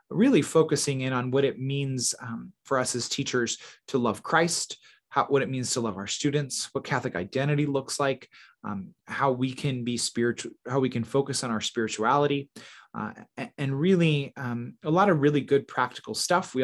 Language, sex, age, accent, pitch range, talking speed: English, male, 20-39, American, 115-140 Hz, 190 wpm